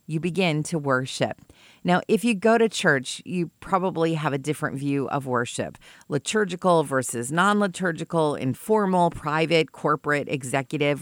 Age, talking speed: 40-59, 135 wpm